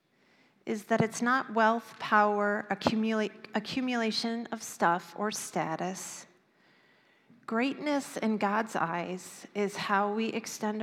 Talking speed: 110 wpm